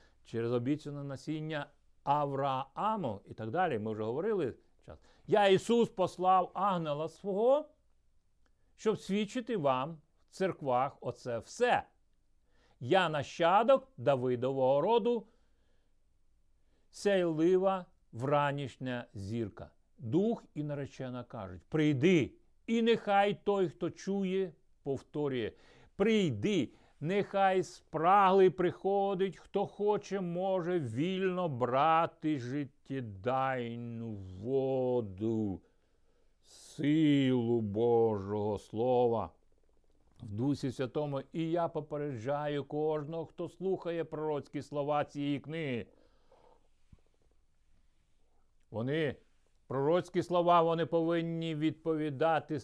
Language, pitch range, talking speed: Ukrainian, 125-180 Hz, 85 wpm